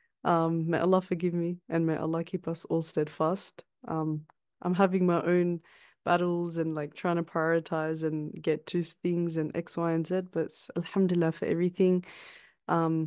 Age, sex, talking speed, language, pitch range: 20-39, female, 175 wpm, English, 160-185 Hz